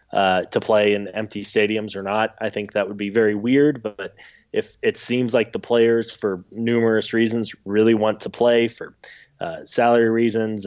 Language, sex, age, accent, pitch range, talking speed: English, male, 20-39, American, 100-115 Hz, 185 wpm